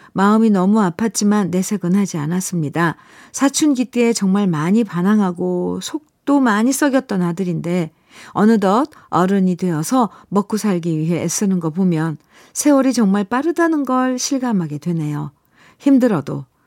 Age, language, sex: 50-69, Korean, female